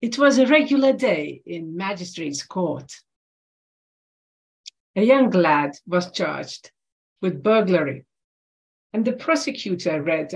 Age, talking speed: 50-69, 110 wpm